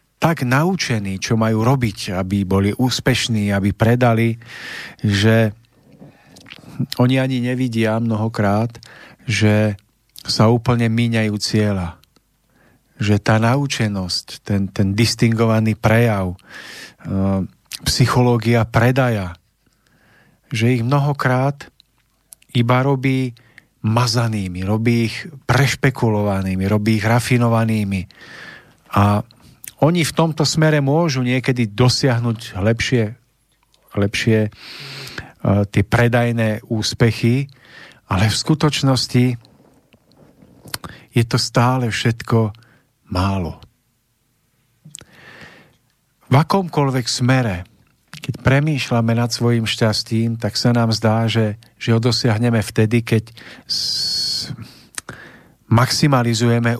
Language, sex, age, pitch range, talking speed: Slovak, male, 40-59, 110-125 Hz, 90 wpm